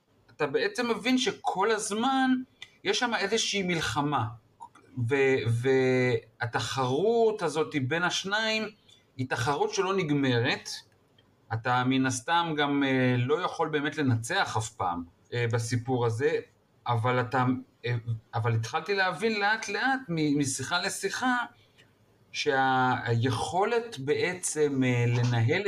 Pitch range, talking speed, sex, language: 120-180 Hz, 100 wpm, male, Hebrew